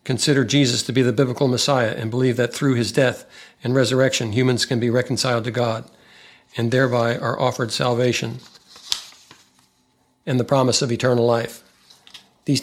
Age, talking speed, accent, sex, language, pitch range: 60-79, 155 wpm, American, male, English, 120-135 Hz